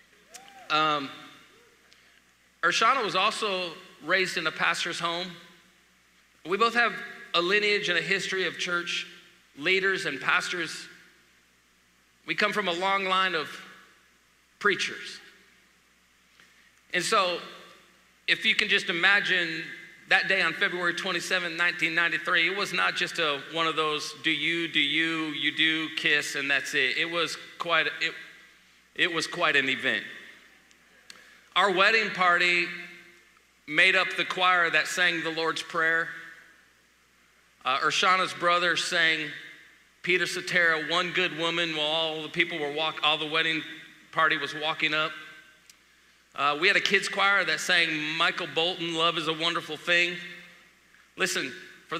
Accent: American